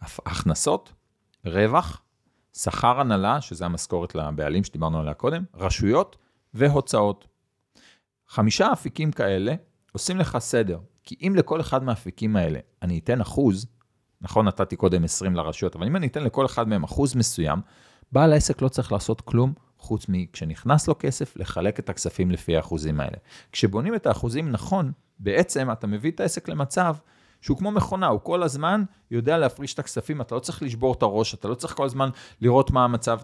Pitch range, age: 95-145 Hz, 40-59